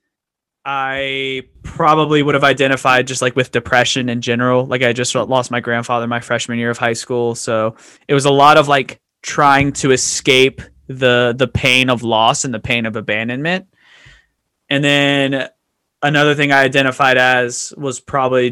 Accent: American